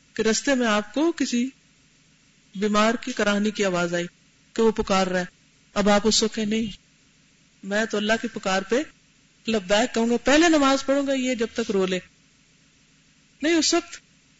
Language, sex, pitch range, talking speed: Urdu, female, 190-255 Hz, 105 wpm